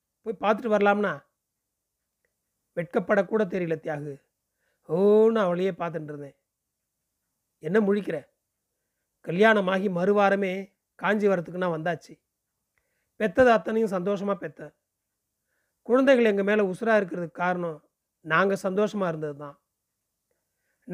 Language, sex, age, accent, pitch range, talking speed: Tamil, male, 40-59, native, 160-215 Hz, 90 wpm